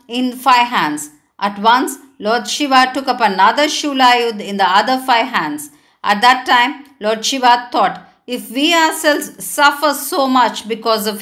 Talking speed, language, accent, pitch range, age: 165 wpm, Tamil, native, 220-270 Hz, 50-69